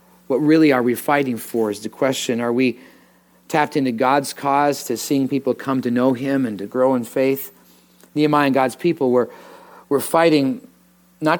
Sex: male